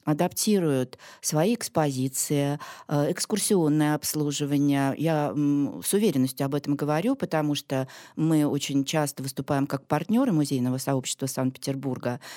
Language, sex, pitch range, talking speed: Russian, female, 135-165 Hz, 115 wpm